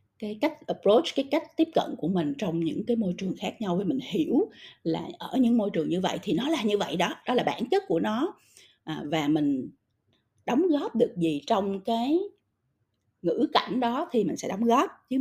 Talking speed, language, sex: 220 wpm, Vietnamese, female